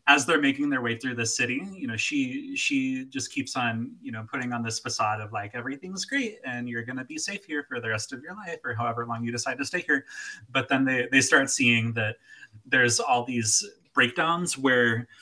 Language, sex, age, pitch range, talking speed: English, male, 20-39, 115-170 Hz, 230 wpm